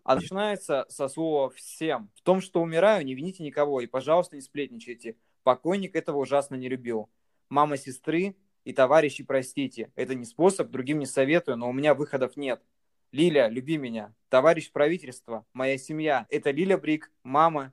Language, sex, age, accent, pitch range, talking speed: Russian, male, 20-39, native, 130-165 Hz, 160 wpm